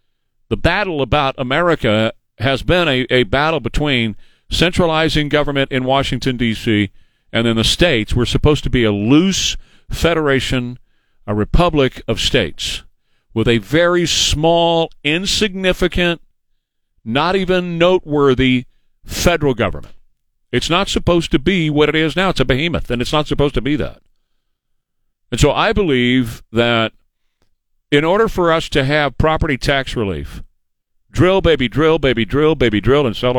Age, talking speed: 50-69, 145 wpm